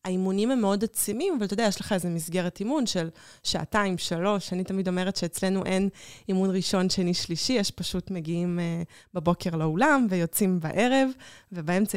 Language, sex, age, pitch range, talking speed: Hebrew, female, 20-39, 170-210 Hz, 165 wpm